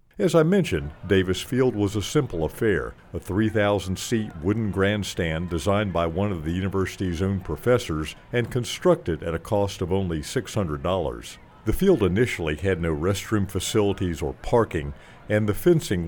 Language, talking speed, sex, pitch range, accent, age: English, 155 wpm, male, 85-110 Hz, American, 50-69